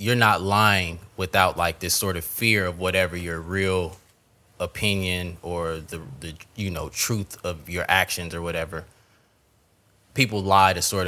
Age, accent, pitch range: 20-39, American, 90-105 Hz